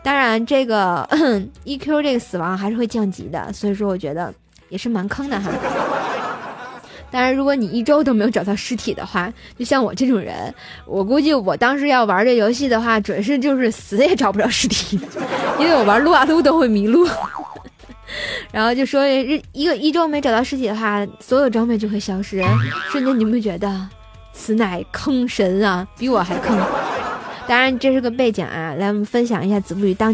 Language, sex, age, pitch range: Chinese, female, 20-39, 205-265 Hz